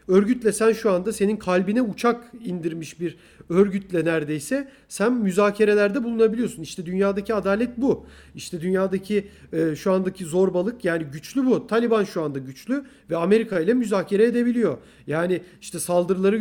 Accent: native